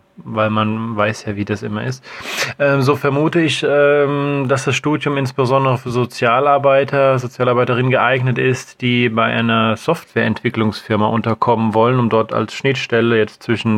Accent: German